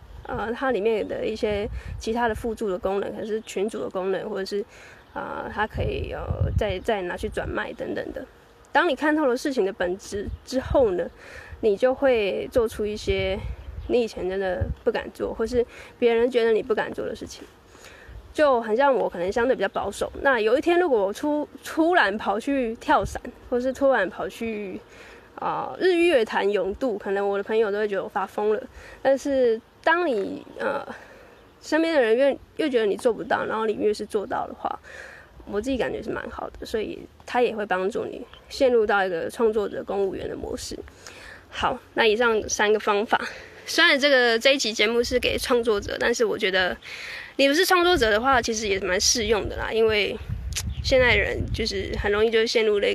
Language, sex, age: Chinese, female, 10-29